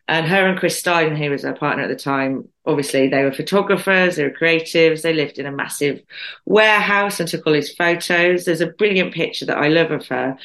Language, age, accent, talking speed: English, 30-49, British, 225 wpm